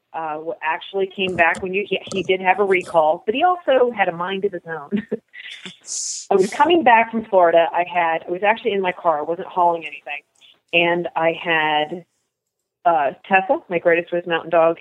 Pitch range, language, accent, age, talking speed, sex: 170-245 Hz, English, American, 30-49, 195 wpm, female